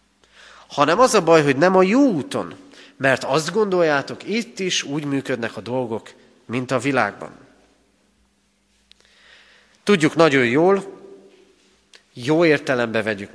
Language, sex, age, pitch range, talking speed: Hungarian, male, 40-59, 120-165 Hz, 120 wpm